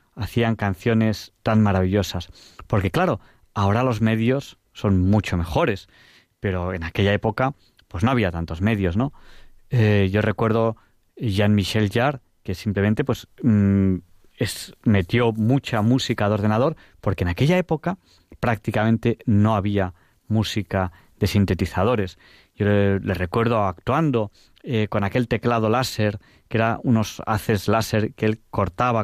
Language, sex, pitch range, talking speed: Spanish, male, 95-115 Hz, 135 wpm